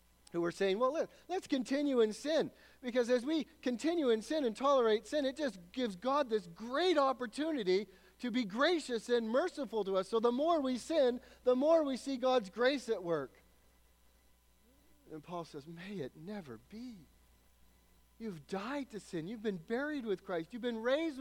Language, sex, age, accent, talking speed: English, male, 40-59, American, 180 wpm